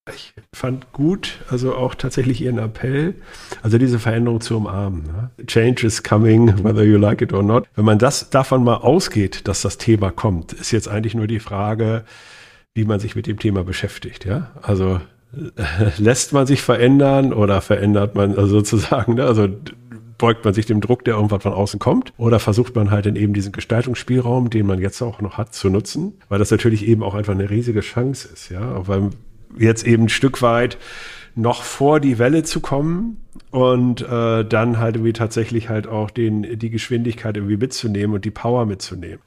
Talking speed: 195 wpm